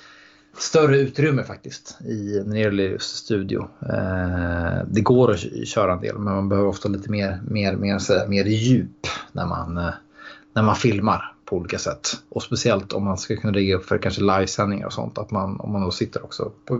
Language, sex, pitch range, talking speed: Swedish, male, 95-115 Hz, 180 wpm